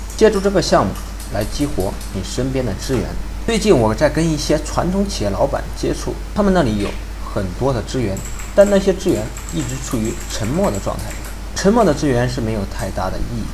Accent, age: native, 50-69